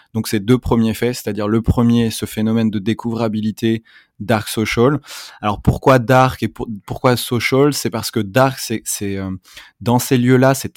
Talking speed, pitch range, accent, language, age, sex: 180 wpm, 105-125 Hz, French, French, 20-39, male